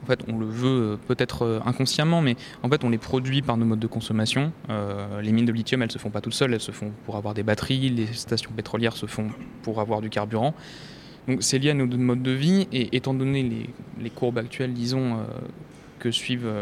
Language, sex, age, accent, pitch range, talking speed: French, male, 20-39, French, 110-130 Hz, 235 wpm